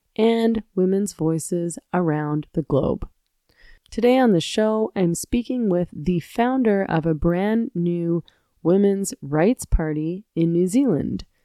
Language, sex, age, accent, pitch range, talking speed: English, female, 20-39, American, 160-215 Hz, 130 wpm